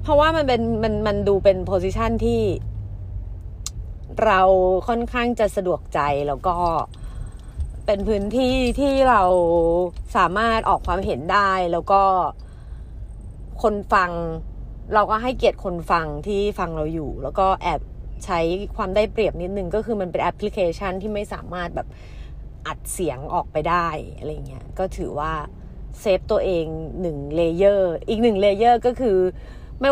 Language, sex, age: Thai, female, 30-49